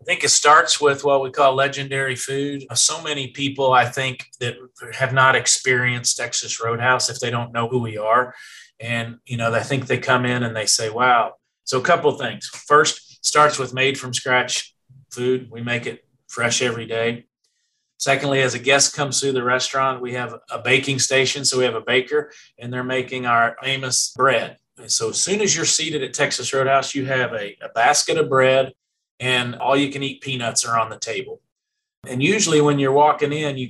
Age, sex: 40-59, male